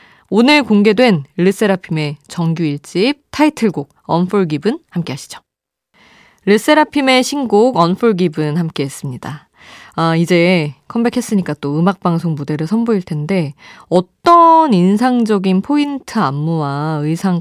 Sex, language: female, Korean